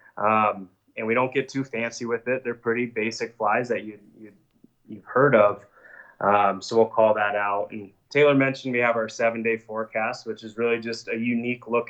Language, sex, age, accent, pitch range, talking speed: English, male, 20-39, American, 110-120 Hz, 205 wpm